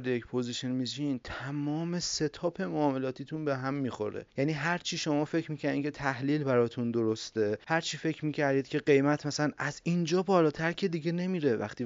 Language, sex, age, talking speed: Persian, male, 30-49, 165 wpm